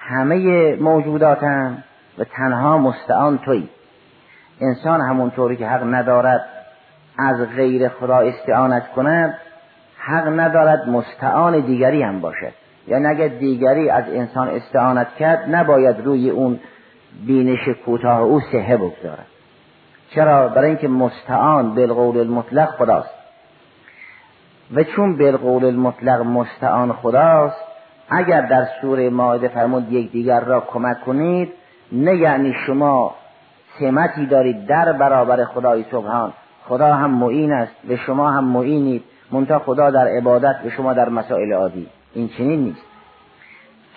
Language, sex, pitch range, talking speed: Persian, male, 125-150 Hz, 120 wpm